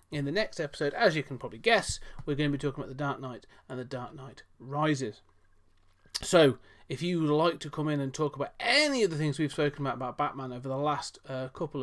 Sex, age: male, 30-49